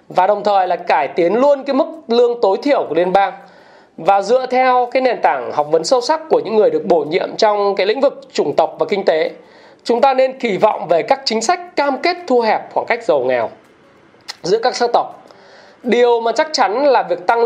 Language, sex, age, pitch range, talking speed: Vietnamese, male, 20-39, 180-245 Hz, 235 wpm